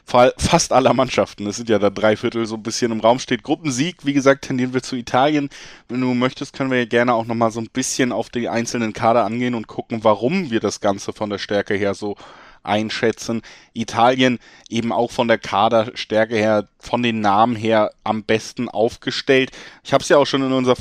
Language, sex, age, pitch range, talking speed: German, male, 20-39, 110-125 Hz, 210 wpm